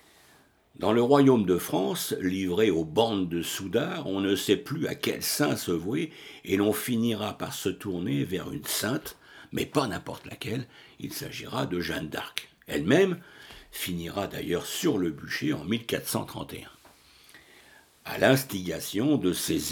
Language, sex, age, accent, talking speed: French, male, 60-79, French, 150 wpm